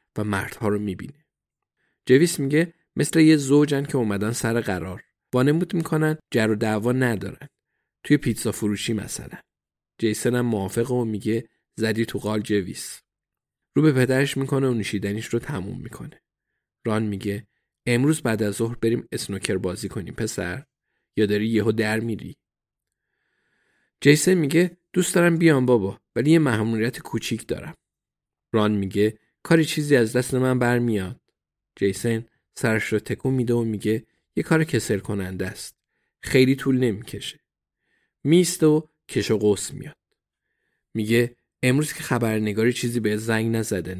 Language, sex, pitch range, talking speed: Persian, male, 105-135 Hz, 145 wpm